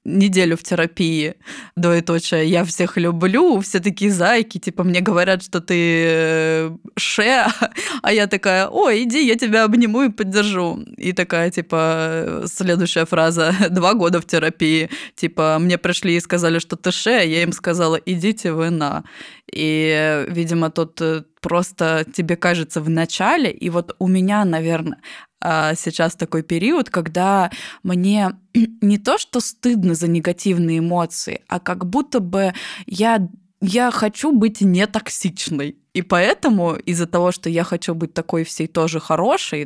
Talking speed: 145 wpm